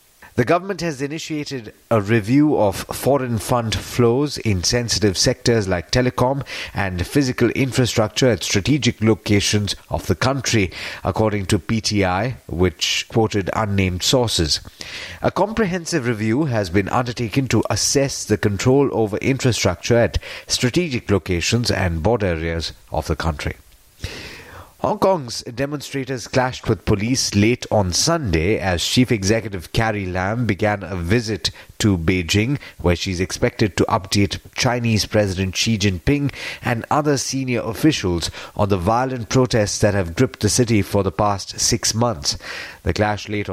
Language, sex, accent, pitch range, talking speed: English, male, Indian, 95-125 Hz, 140 wpm